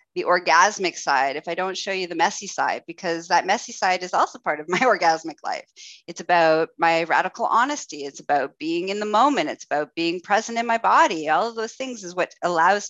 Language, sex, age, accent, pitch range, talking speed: English, female, 30-49, American, 170-245 Hz, 220 wpm